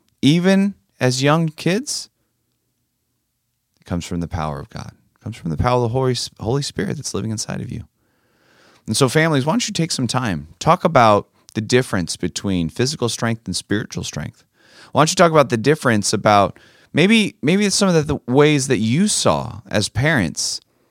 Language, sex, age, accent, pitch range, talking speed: English, male, 30-49, American, 95-145 Hz, 185 wpm